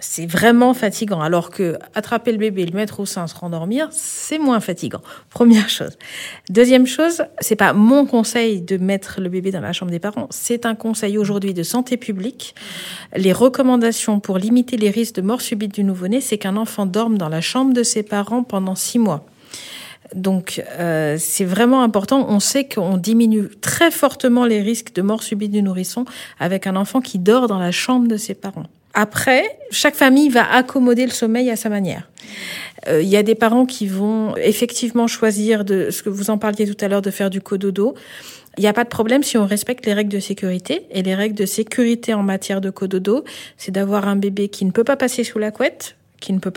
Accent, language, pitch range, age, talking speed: French, French, 195-240 Hz, 50-69, 210 wpm